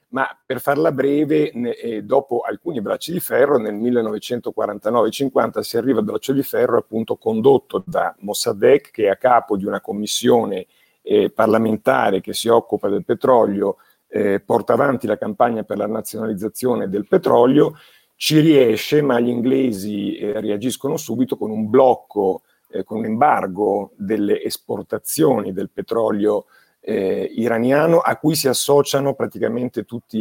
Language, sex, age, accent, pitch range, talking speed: Italian, male, 50-69, native, 110-150 Hz, 135 wpm